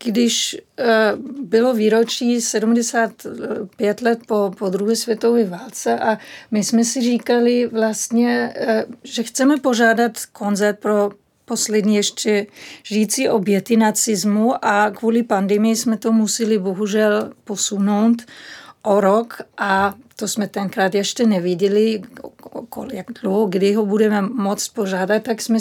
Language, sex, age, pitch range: Czech, female, 40-59, 210-235 Hz